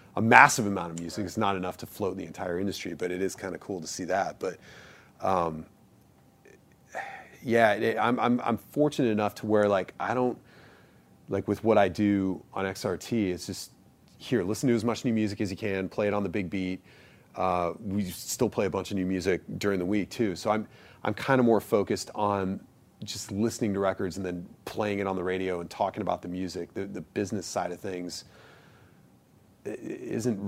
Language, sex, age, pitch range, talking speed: English, male, 30-49, 90-105 Hz, 205 wpm